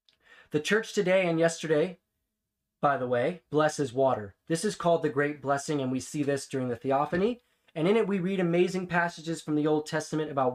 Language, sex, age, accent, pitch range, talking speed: English, male, 20-39, American, 130-165 Hz, 200 wpm